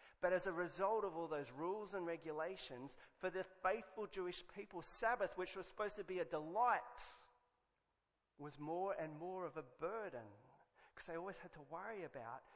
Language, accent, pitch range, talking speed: English, Australian, 155-200 Hz, 175 wpm